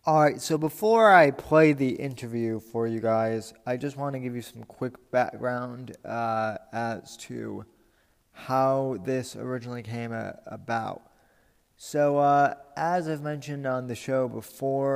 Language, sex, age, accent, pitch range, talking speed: English, male, 20-39, American, 115-135 Hz, 145 wpm